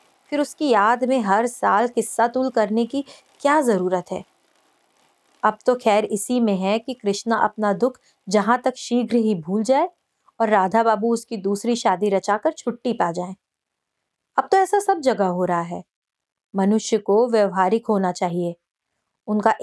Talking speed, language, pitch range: 160 wpm, Hindi, 195-245 Hz